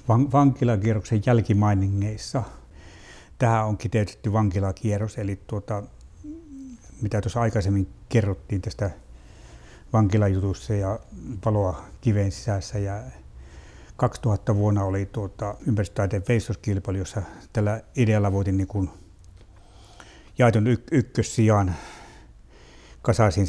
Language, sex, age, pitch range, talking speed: Finnish, male, 60-79, 95-115 Hz, 90 wpm